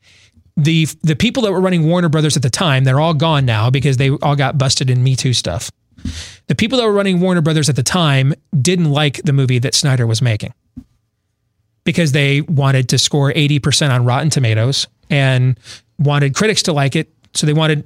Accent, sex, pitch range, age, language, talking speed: American, male, 130-165 Hz, 30-49, English, 200 wpm